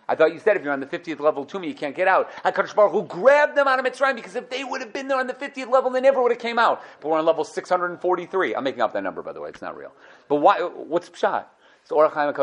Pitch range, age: 155-240 Hz, 40-59